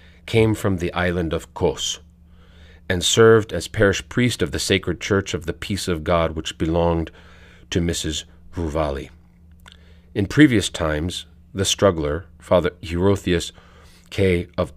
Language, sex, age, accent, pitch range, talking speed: English, male, 40-59, American, 85-100 Hz, 140 wpm